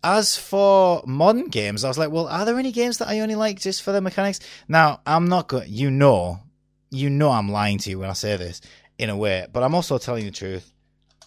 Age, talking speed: 20-39, 245 wpm